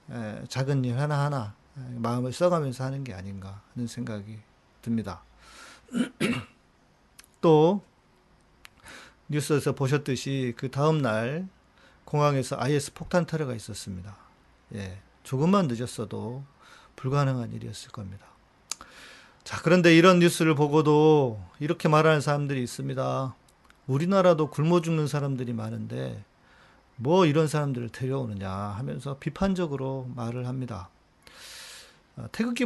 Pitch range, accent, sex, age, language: 110-155 Hz, native, male, 40-59, Korean